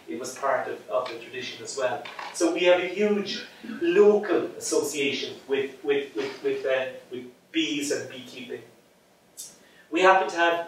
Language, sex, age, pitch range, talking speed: English, male, 30-49, 140-180 Hz, 165 wpm